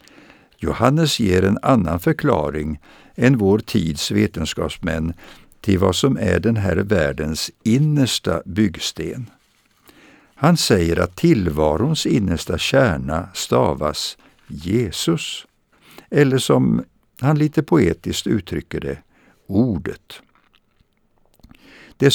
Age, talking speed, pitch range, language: 60-79, 95 wpm, 90-130 Hz, Swedish